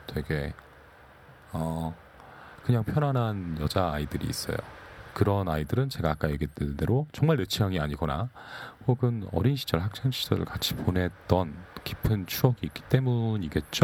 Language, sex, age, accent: Korean, male, 40-59, native